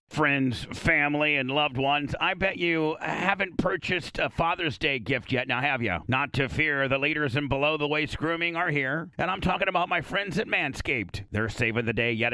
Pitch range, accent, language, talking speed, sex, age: 125-155 Hz, American, English, 210 wpm, male, 50-69